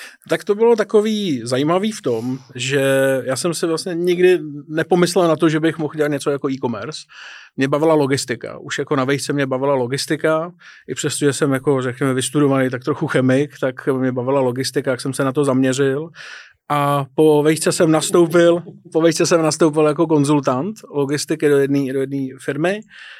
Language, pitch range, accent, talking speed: Czech, 140-160 Hz, native, 170 wpm